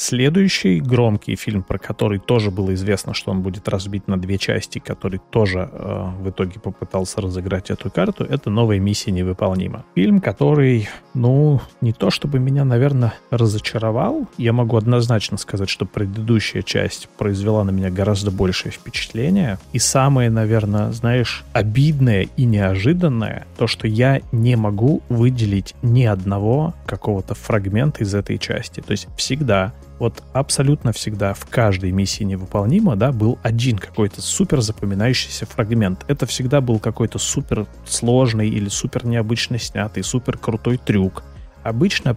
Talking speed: 140 wpm